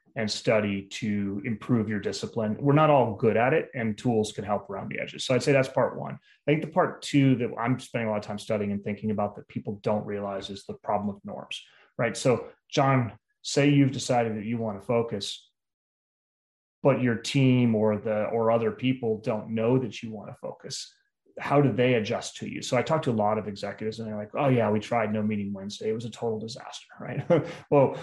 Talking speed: 230 wpm